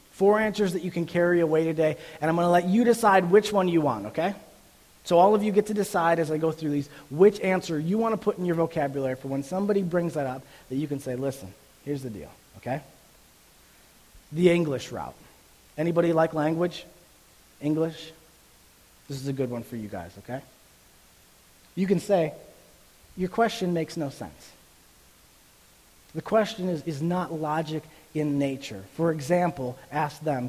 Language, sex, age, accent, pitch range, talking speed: English, male, 30-49, American, 135-180 Hz, 180 wpm